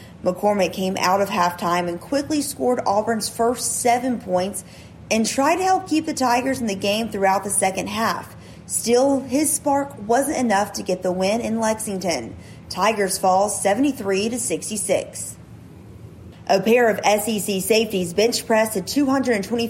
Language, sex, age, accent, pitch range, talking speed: English, female, 30-49, American, 185-235 Hz, 145 wpm